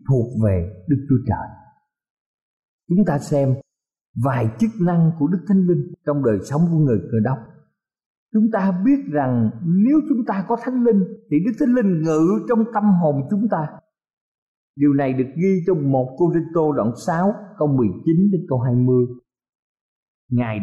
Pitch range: 130-200 Hz